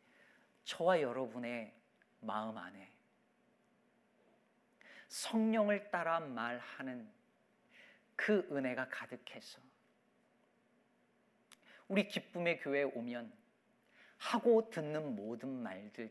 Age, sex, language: 40-59, male, Korean